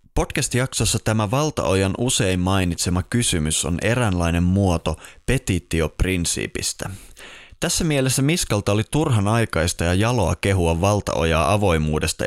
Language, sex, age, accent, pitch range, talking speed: Finnish, male, 20-39, native, 85-115 Hz, 105 wpm